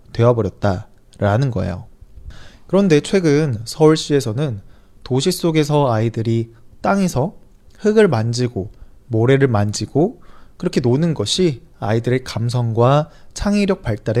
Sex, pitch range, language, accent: male, 105-150 Hz, Chinese, Korean